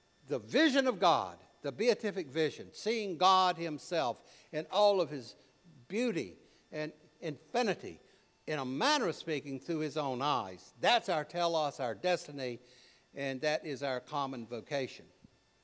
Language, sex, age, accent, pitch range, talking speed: English, male, 60-79, American, 140-190 Hz, 140 wpm